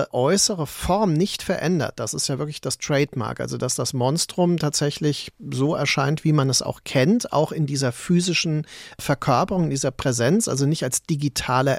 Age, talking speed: 40-59, 175 wpm